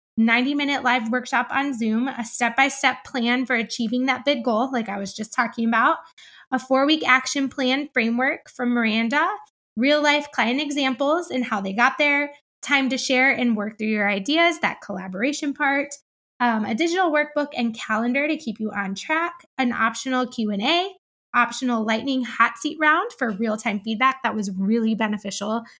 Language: English